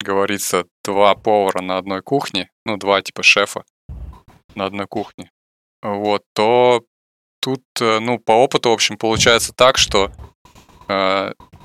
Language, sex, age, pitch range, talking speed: Russian, male, 20-39, 100-120 Hz, 130 wpm